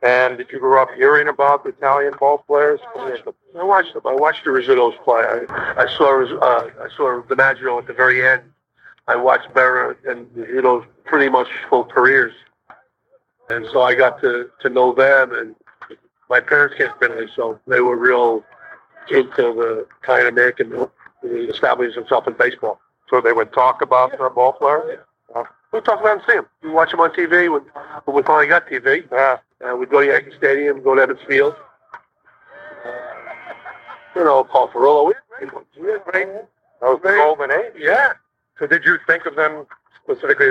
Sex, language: male, English